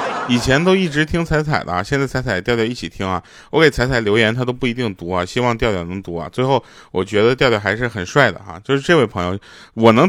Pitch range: 100-145 Hz